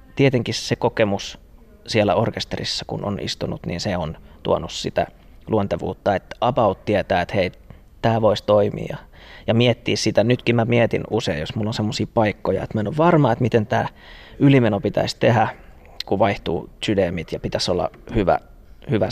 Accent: native